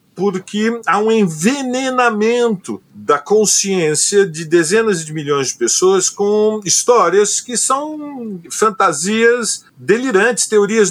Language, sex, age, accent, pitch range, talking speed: Portuguese, male, 50-69, Brazilian, 190-230 Hz, 105 wpm